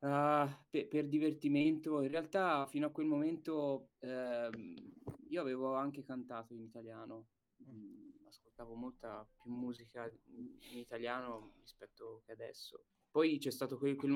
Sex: male